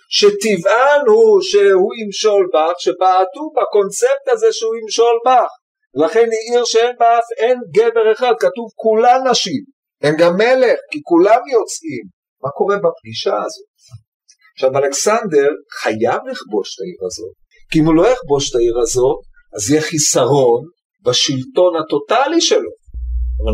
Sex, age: male, 50-69